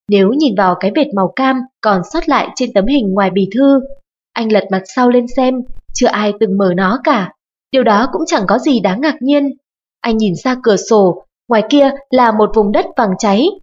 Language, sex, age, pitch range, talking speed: Vietnamese, female, 20-39, 205-275 Hz, 220 wpm